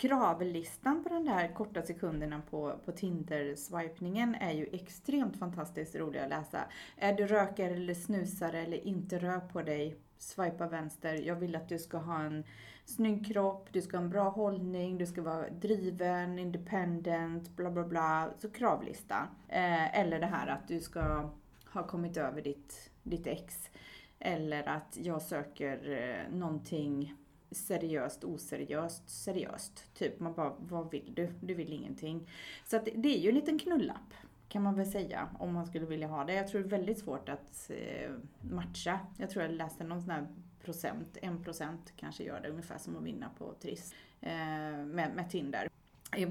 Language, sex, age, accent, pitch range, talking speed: Swedish, female, 30-49, native, 160-195 Hz, 170 wpm